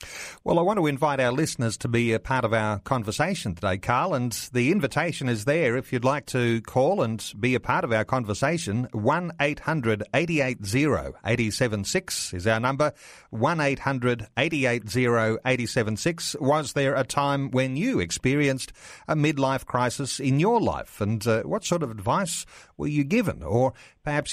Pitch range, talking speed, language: 110-140 Hz, 155 wpm, English